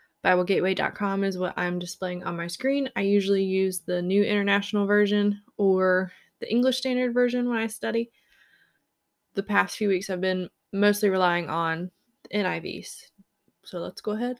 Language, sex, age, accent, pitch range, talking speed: English, female, 20-39, American, 190-225 Hz, 155 wpm